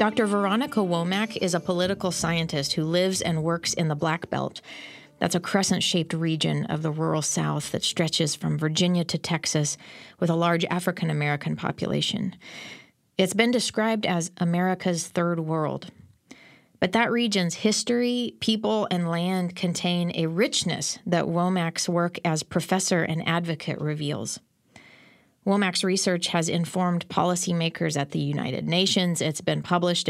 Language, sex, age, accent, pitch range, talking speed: English, female, 30-49, American, 165-190 Hz, 140 wpm